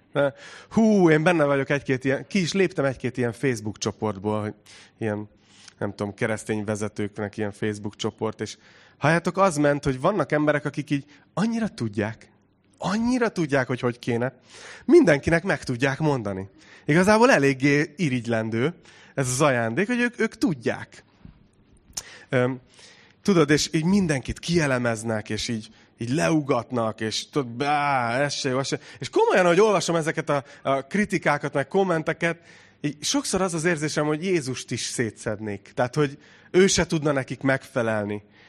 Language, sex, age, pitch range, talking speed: Hungarian, male, 30-49, 115-160 Hz, 140 wpm